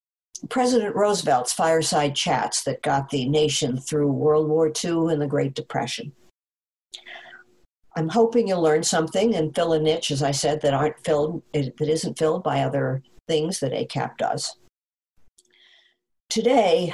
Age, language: 60-79, English